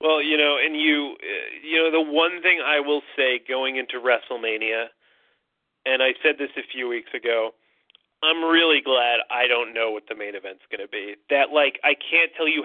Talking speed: 210 wpm